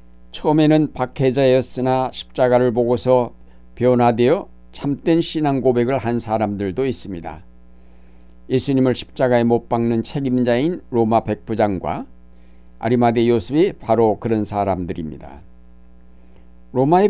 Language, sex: Korean, male